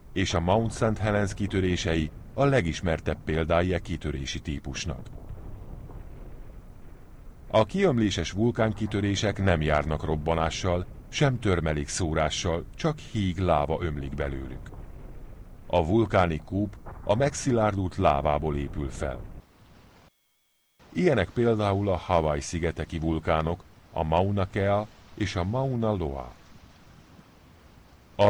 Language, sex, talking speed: Hungarian, male, 100 wpm